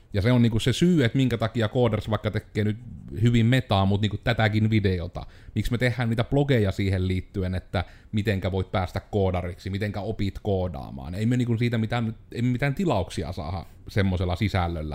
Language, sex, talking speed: Finnish, male, 180 wpm